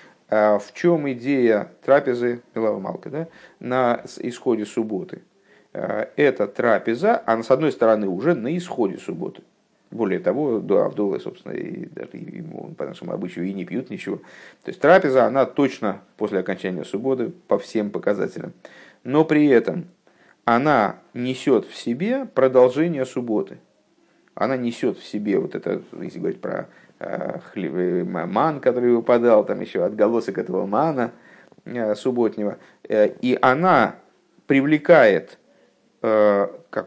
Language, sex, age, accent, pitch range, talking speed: Russian, male, 50-69, native, 110-135 Hz, 125 wpm